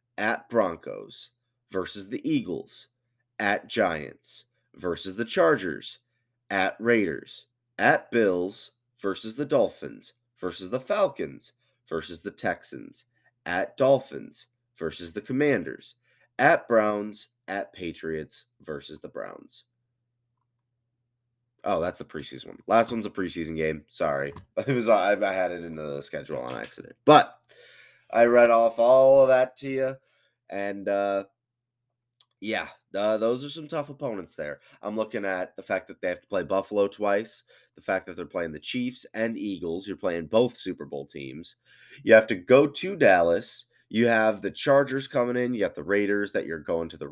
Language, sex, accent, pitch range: English, male, American, 95-120 Hz